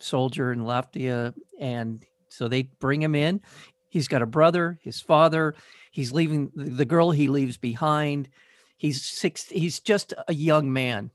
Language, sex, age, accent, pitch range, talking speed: English, male, 50-69, American, 125-155 Hz, 155 wpm